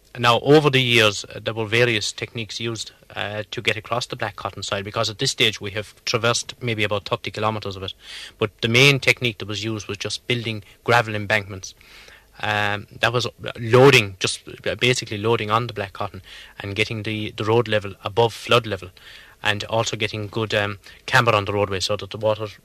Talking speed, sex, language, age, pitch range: 200 wpm, male, English, 20-39, 100-115 Hz